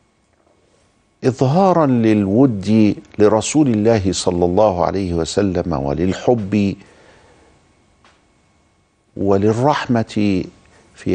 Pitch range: 95-120 Hz